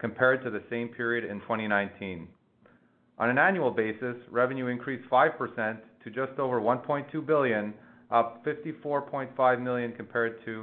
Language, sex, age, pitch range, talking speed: English, male, 40-59, 115-140 Hz, 135 wpm